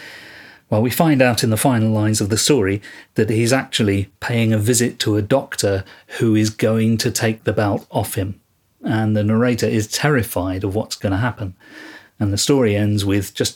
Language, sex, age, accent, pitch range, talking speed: English, male, 40-59, British, 110-130 Hz, 200 wpm